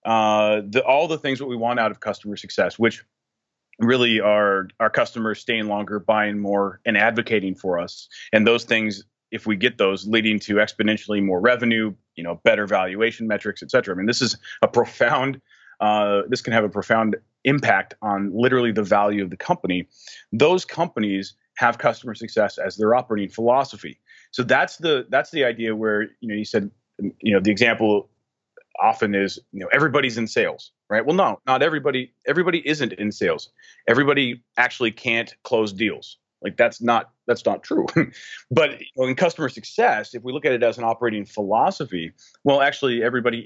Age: 30-49